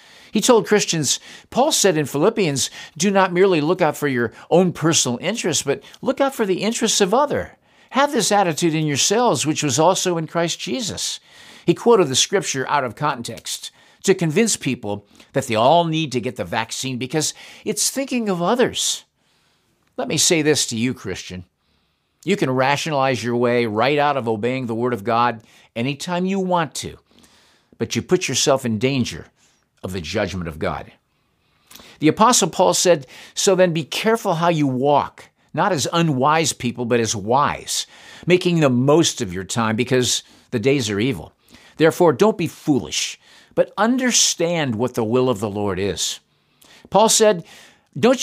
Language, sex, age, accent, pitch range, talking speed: English, male, 50-69, American, 120-180 Hz, 175 wpm